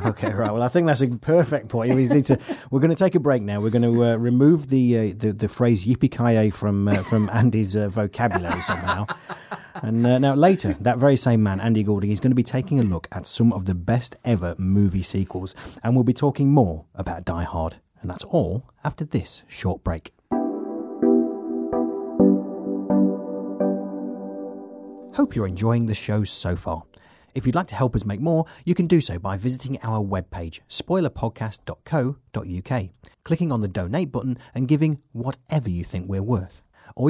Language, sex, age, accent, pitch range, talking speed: English, male, 30-49, British, 95-130 Hz, 185 wpm